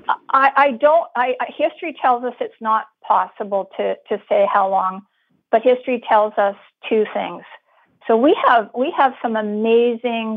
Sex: female